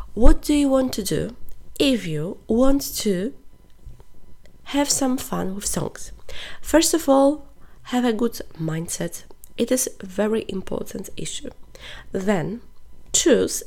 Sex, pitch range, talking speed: female, 190-265 Hz, 130 wpm